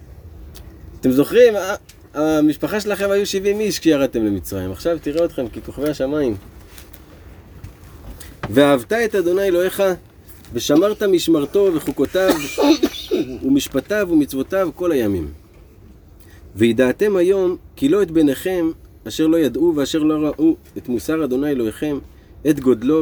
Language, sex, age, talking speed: Hebrew, male, 30-49, 115 wpm